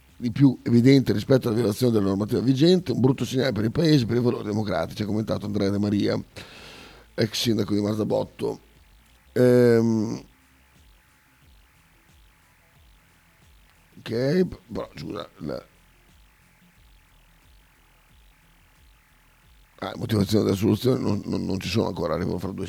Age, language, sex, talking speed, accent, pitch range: 50-69, Italian, male, 120 wpm, native, 100-125 Hz